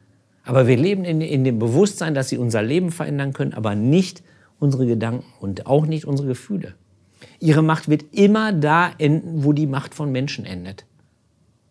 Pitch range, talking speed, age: 105-145 Hz, 170 wpm, 50-69